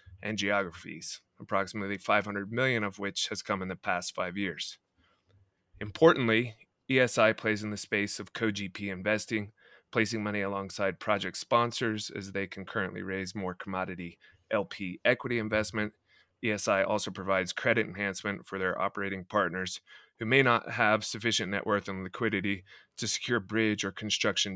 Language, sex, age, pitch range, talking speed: English, male, 20-39, 95-115 Hz, 145 wpm